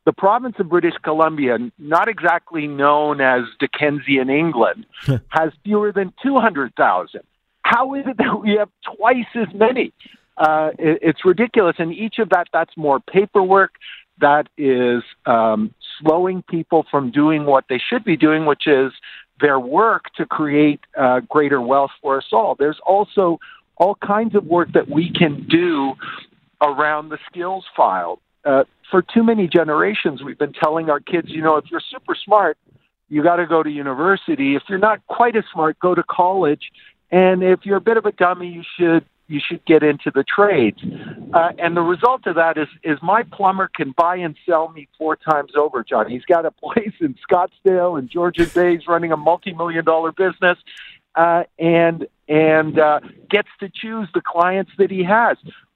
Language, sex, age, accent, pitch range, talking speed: English, male, 50-69, American, 150-195 Hz, 180 wpm